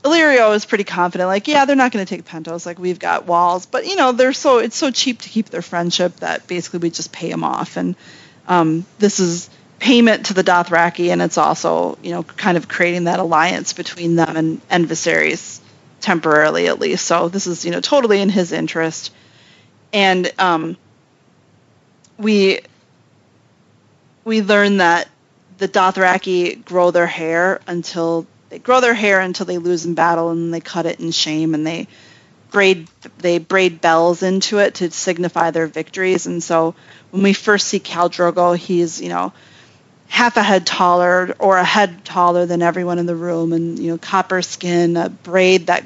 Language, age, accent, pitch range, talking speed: English, 30-49, American, 165-190 Hz, 185 wpm